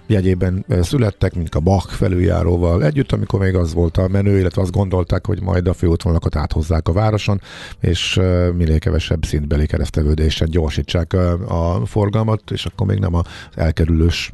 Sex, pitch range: male, 80-100 Hz